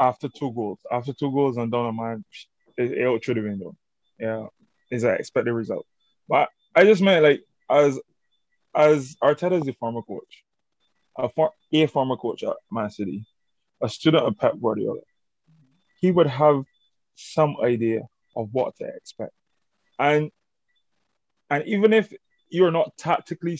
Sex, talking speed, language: male, 160 wpm, English